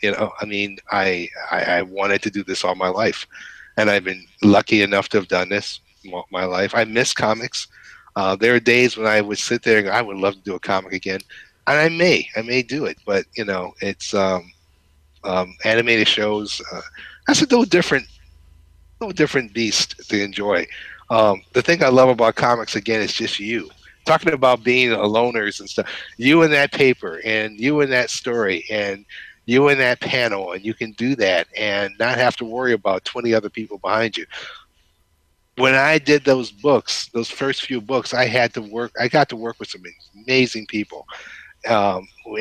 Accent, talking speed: American, 200 wpm